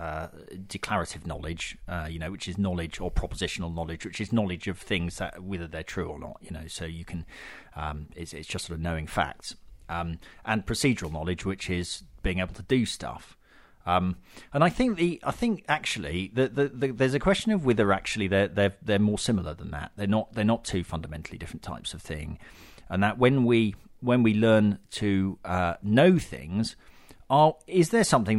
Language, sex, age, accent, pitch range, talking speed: English, male, 40-59, British, 85-115 Hz, 205 wpm